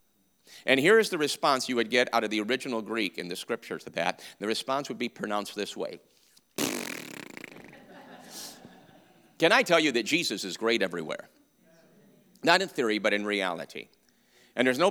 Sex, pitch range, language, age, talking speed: male, 95-125 Hz, English, 50-69, 175 wpm